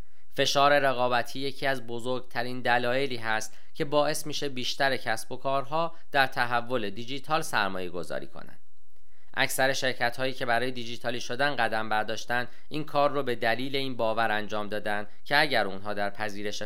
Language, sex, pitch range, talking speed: Persian, male, 105-135 Hz, 155 wpm